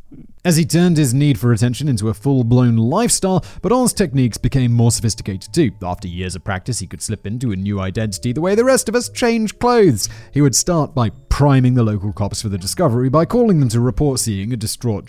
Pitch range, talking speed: 110-160 Hz, 220 wpm